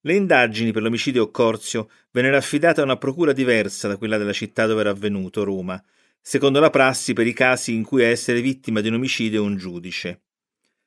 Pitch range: 110-155 Hz